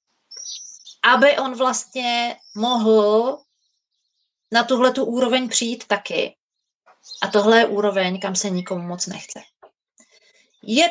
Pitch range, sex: 205-255 Hz, female